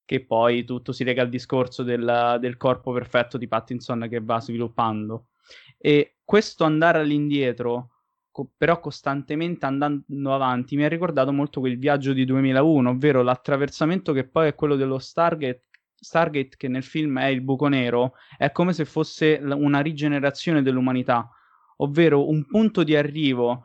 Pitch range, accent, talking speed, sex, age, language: 130-150 Hz, native, 150 wpm, male, 20-39, Italian